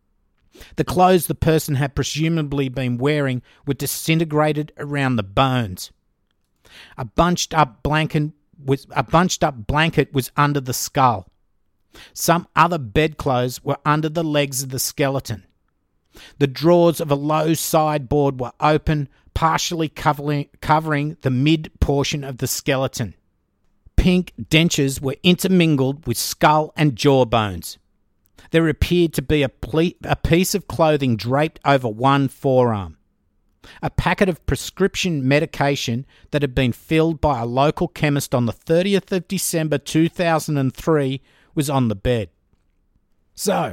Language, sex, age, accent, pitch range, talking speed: English, male, 50-69, Australian, 125-160 Hz, 130 wpm